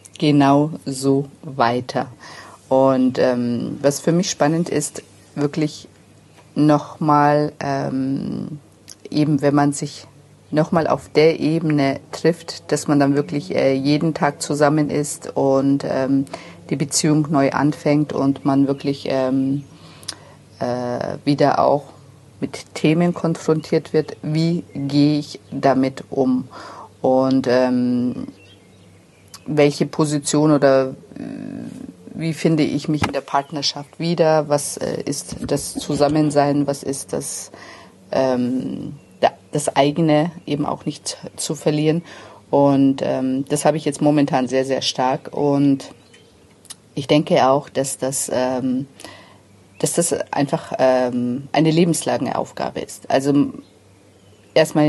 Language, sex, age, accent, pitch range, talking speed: German, female, 50-69, German, 130-150 Hz, 120 wpm